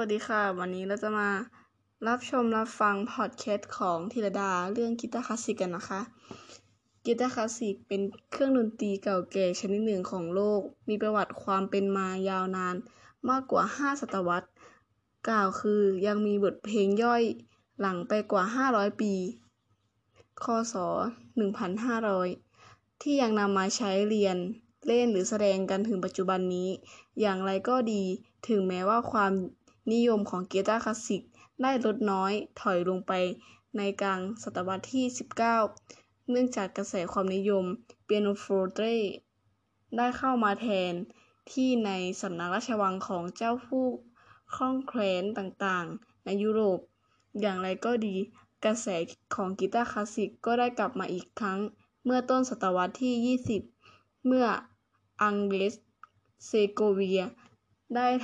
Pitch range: 190-230 Hz